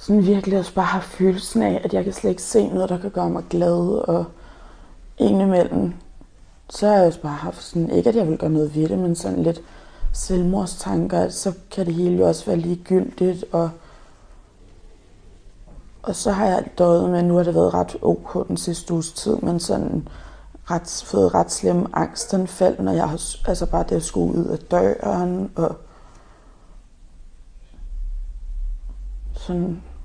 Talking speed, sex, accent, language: 180 wpm, female, native, Danish